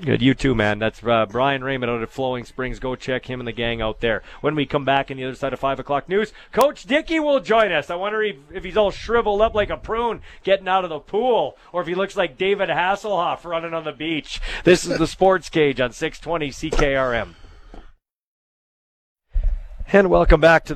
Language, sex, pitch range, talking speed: English, male, 130-175 Hz, 215 wpm